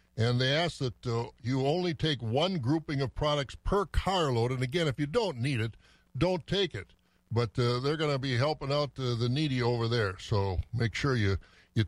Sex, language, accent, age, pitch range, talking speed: male, English, American, 60-79, 120-165 Hz, 210 wpm